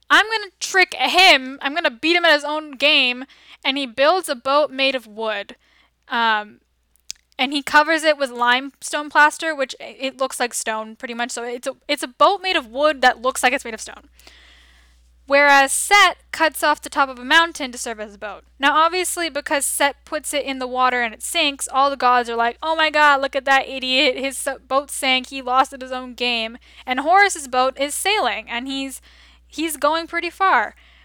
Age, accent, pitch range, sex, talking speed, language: 10-29, American, 245-295 Hz, female, 215 wpm, English